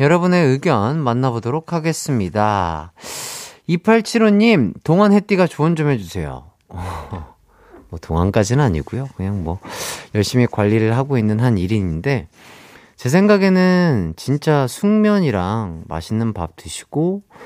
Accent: native